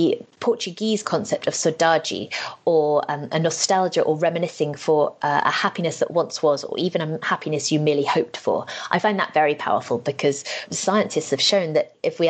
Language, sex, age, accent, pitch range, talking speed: English, female, 20-39, British, 145-180 Hz, 180 wpm